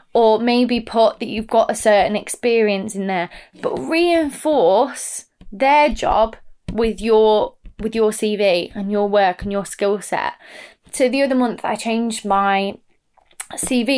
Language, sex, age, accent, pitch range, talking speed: English, female, 20-39, British, 200-235 Hz, 150 wpm